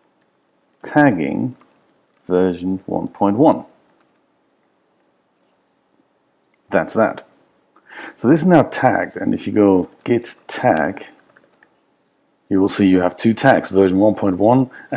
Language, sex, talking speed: English, male, 95 wpm